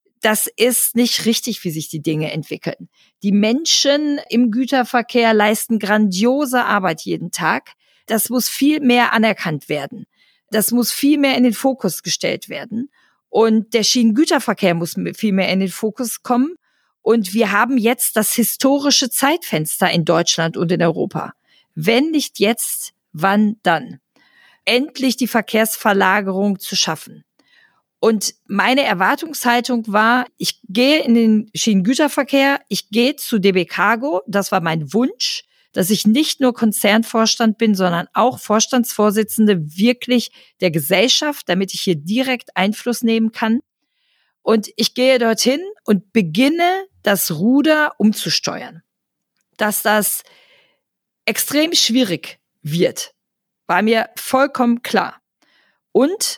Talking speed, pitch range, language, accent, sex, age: 130 wpm, 195-255 Hz, German, German, female, 40-59